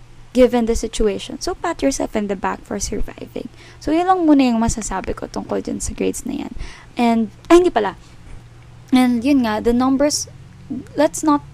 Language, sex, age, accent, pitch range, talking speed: Filipino, female, 20-39, native, 210-245 Hz, 180 wpm